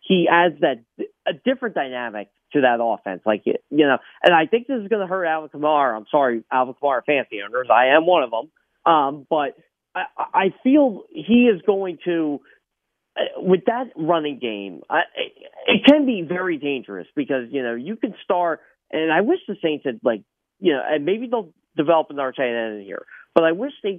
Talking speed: 205 wpm